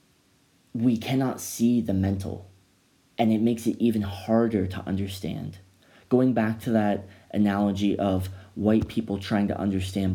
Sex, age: male, 30-49